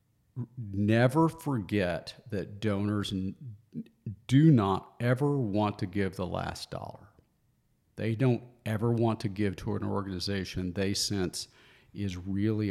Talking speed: 125 wpm